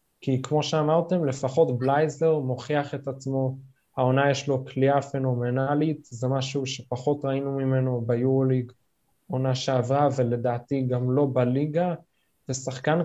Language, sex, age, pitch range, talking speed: Hebrew, male, 20-39, 125-145 Hz, 120 wpm